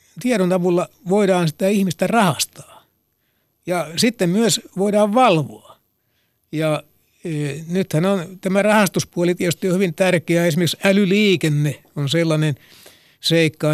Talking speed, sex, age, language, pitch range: 115 wpm, male, 60-79, Finnish, 150-190 Hz